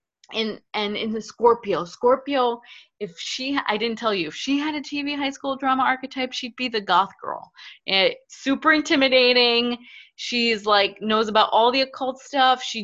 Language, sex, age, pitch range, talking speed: English, female, 20-39, 205-255 Hz, 180 wpm